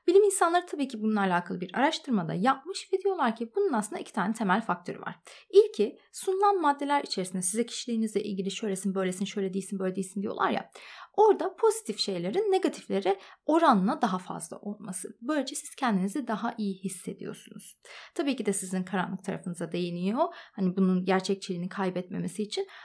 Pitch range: 195-290 Hz